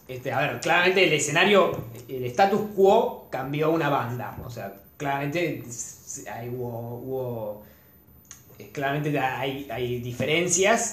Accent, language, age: Argentinian, Spanish, 20-39